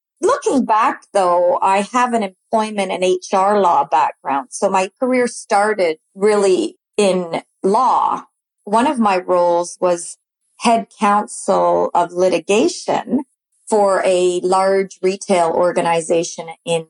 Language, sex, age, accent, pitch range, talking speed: English, female, 40-59, American, 185-230 Hz, 115 wpm